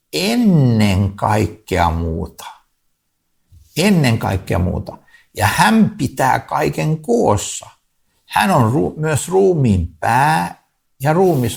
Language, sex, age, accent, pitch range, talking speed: Finnish, male, 60-79, native, 95-150 Hz, 100 wpm